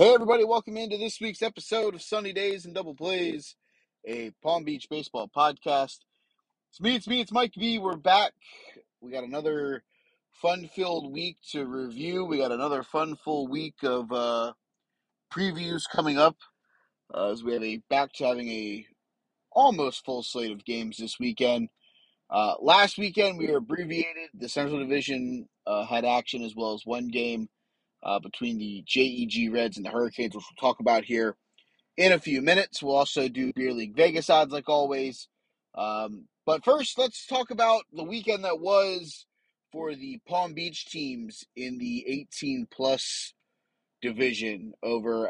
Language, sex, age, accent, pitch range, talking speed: English, male, 30-49, American, 120-205 Hz, 165 wpm